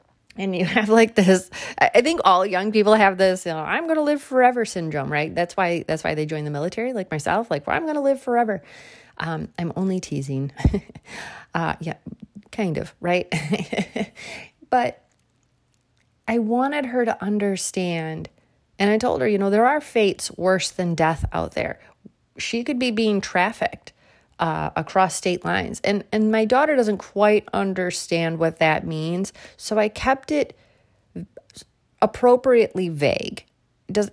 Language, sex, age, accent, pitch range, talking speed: English, female, 30-49, American, 170-220 Hz, 165 wpm